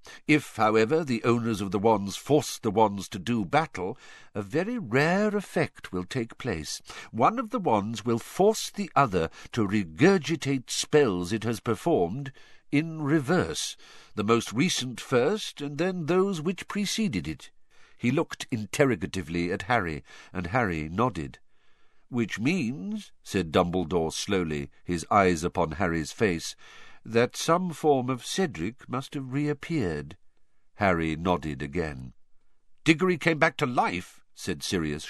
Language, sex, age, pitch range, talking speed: English, male, 50-69, 90-150 Hz, 140 wpm